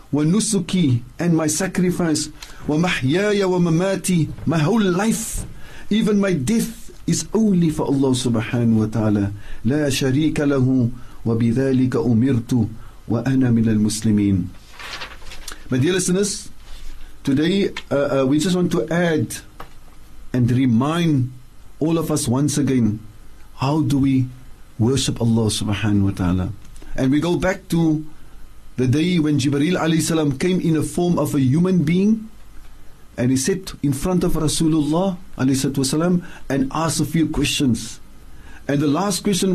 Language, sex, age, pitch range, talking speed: English, male, 50-69, 115-165 Hz, 130 wpm